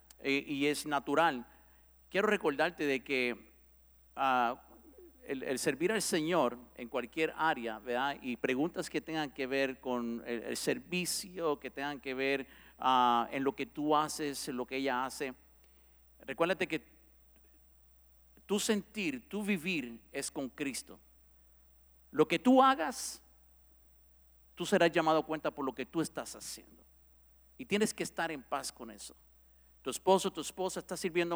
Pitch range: 110-160 Hz